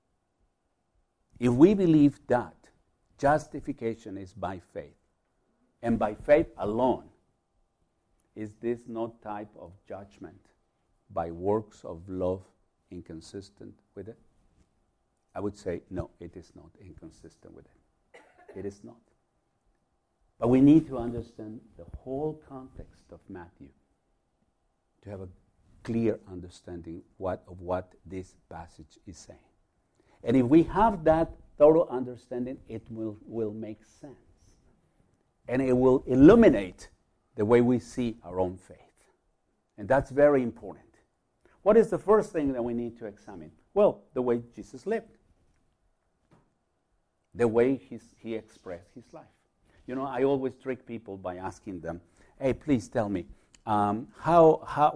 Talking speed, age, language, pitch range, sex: 135 wpm, 50-69, English, 90-130 Hz, male